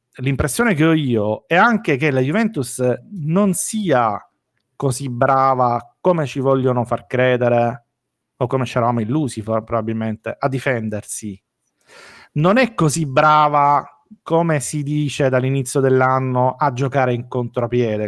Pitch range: 120-150 Hz